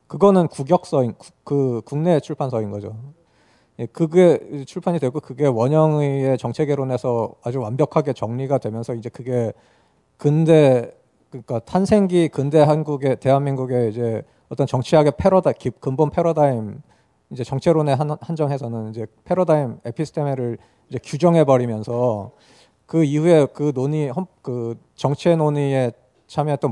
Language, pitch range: Korean, 120-155 Hz